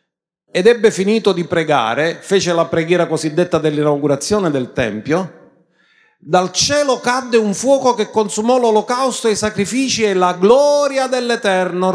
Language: Italian